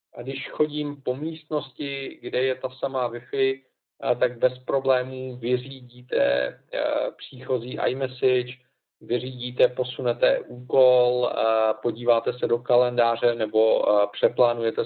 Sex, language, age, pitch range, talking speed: male, Czech, 40-59, 120-140 Hz, 100 wpm